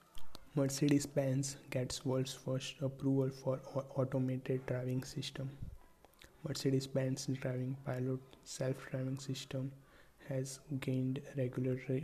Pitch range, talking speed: 130-135 Hz, 85 wpm